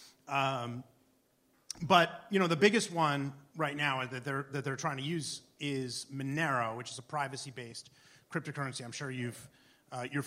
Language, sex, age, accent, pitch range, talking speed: English, male, 30-49, American, 130-165 Hz, 165 wpm